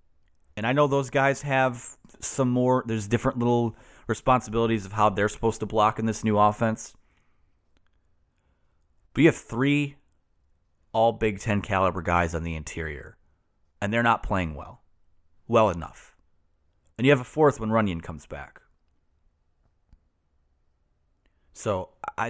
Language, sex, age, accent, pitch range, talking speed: English, male, 30-49, American, 80-120 Hz, 140 wpm